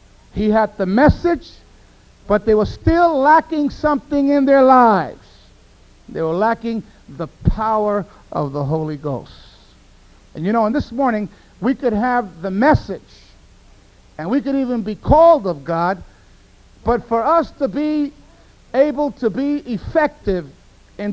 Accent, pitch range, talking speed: American, 190-275 Hz, 145 wpm